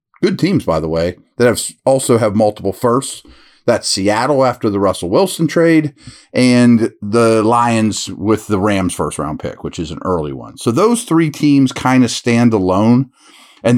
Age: 40-59